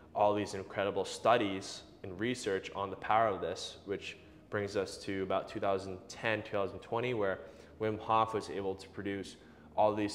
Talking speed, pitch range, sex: 160 wpm, 95-110 Hz, male